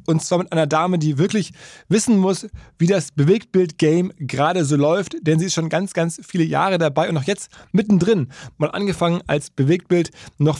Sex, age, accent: male, 20-39, German